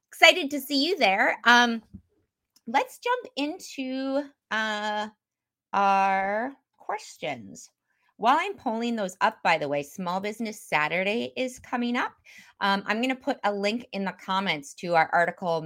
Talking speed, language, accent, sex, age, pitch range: 150 wpm, English, American, female, 30-49, 160-230 Hz